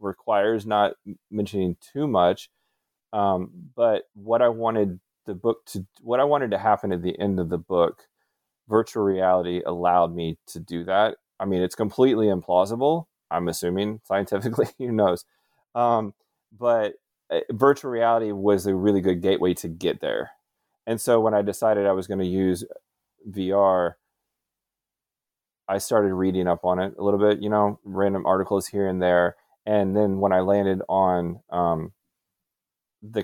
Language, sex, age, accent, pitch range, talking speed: English, male, 30-49, American, 85-100 Hz, 160 wpm